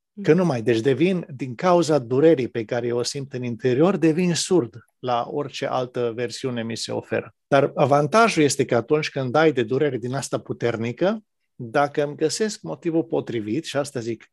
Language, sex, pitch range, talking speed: Romanian, male, 125-160 Hz, 185 wpm